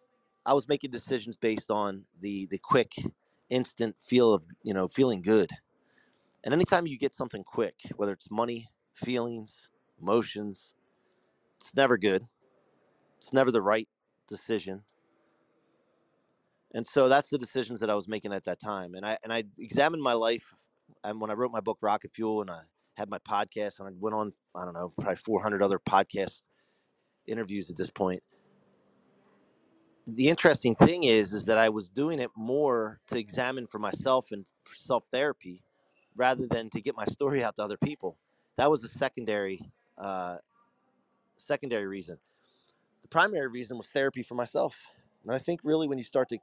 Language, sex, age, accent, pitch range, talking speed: English, male, 30-49, American, 105-130 Hz, 170 wpm